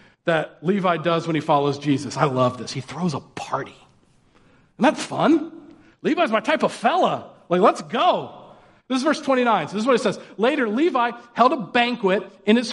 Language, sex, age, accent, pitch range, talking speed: English, male, 40-59, American, 155-215 Hz, 200 wpm